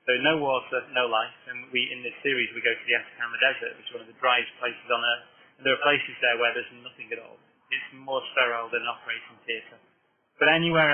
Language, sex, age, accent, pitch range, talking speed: English, male, 30-49, British, 120-155 Hz, 240 wpm